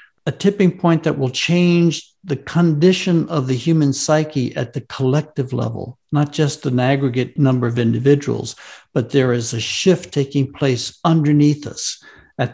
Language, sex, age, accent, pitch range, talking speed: English, male, 60-79, American, 130-160 Hz, 160 wpm